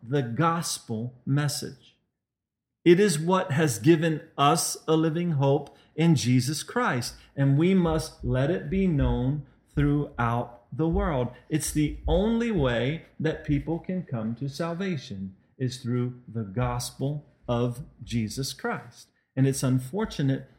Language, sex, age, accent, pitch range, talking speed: English, male, 40-59, American, 120-160 Hz, 130 wpm